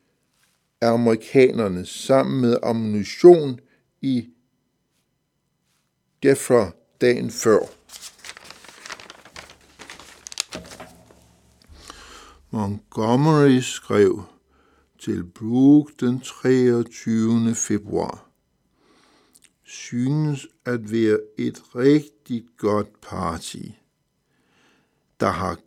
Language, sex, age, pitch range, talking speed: Danish, male, 60-79, 110-140 Hz, 60 wpm